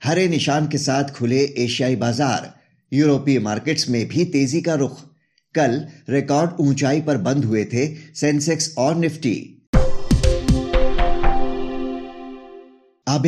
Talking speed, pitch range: 115 wpm, 130-155 Hz